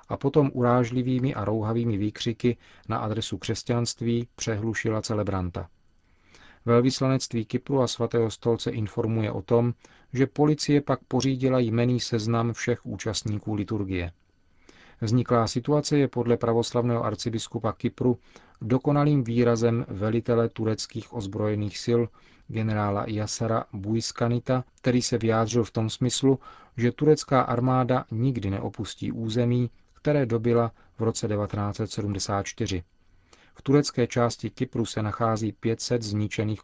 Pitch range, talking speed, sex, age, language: 105-120 Hz, 115 wpm, male, 40-59, Czech